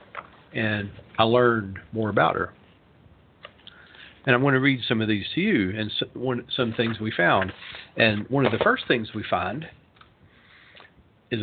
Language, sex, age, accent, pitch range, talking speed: English, male, 50-69, American, 105-130 Hz, 160 wpm